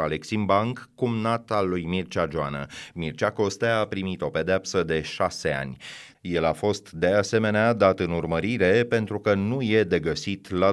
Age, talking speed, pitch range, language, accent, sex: 30-49, 170 wpm, 90-110 Hz, Romanian, native, male